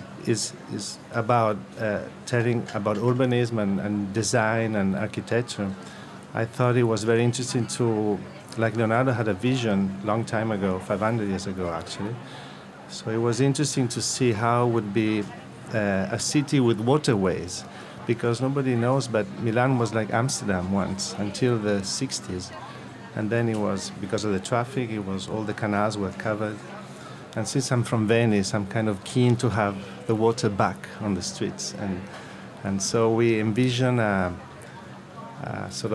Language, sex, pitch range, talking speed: English, male, 100-120 Hz, 165 wpm